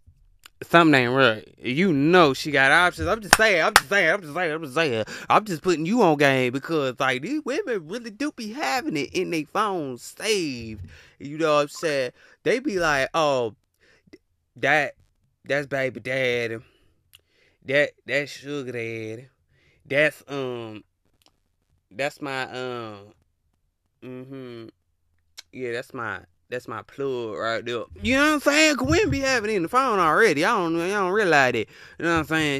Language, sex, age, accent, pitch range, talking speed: English, male, 20-39, American, 90-145 Hz, 180 wpm